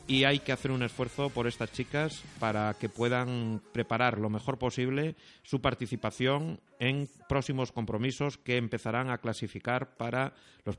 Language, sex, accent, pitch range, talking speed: Spanish, male, Spanish, 110-130 Hz, 150 wpm